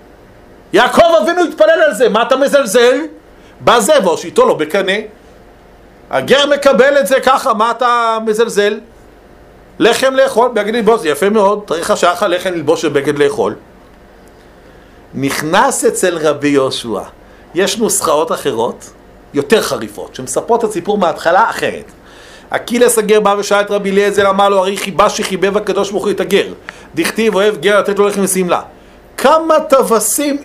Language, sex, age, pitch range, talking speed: Hebrew, male, 50-69, 185-245 Hz, 110 wpm